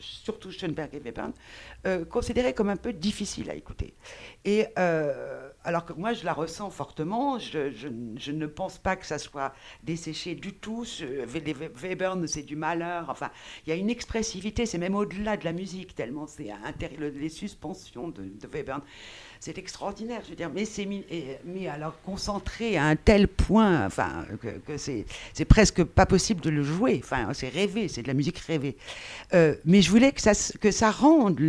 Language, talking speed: French, 185 wpm